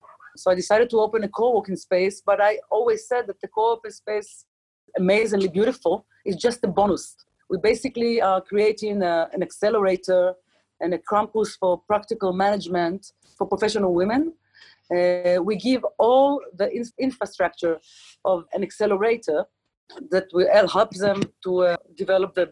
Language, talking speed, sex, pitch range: English, 140 wpm, female, 185-220 Hz